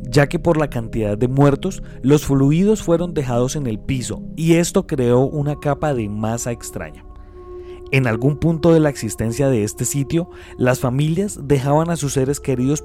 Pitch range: 115-155 Hz